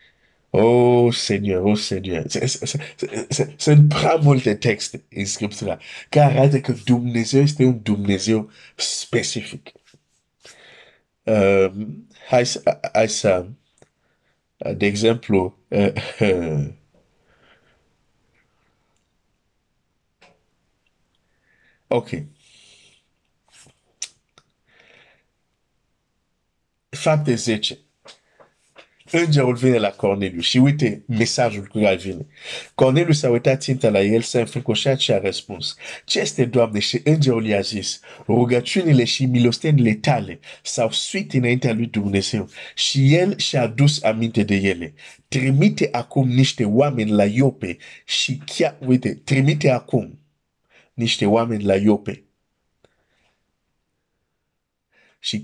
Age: 50-69